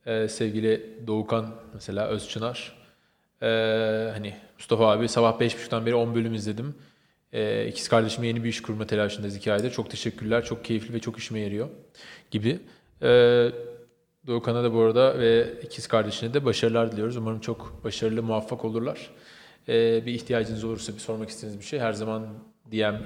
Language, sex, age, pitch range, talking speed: Turkish, male, 20-39, 110-130 Hz, 160 wpm